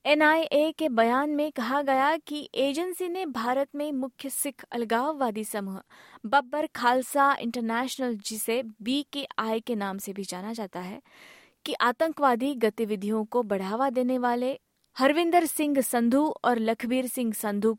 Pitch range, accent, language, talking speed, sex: 225-290 Hz, native, Hindi, 140 wpm, female